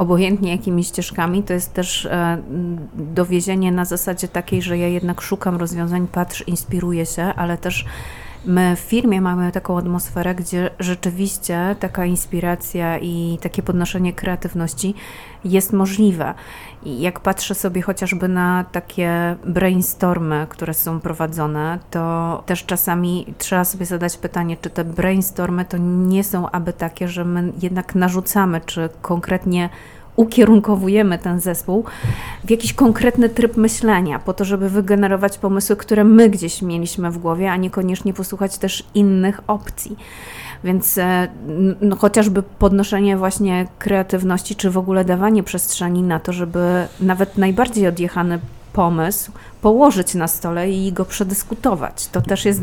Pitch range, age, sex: 175-195 Hz, 30-49, female